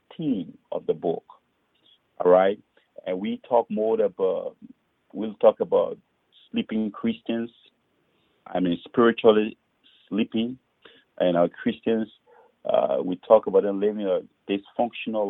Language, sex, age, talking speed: English, male, 50-69, 120 wpm